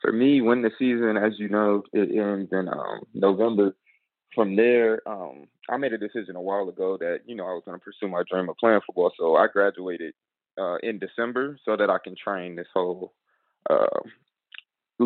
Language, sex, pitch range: English, male, 95-115 Hz